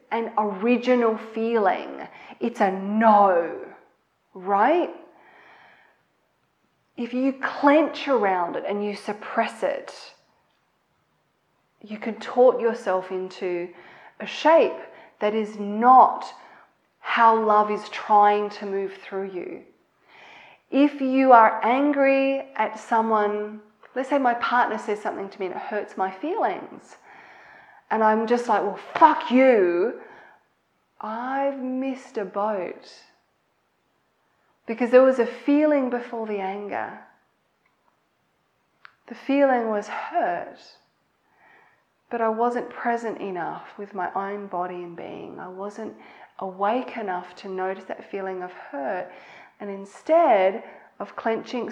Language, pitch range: English, 200-255 Hz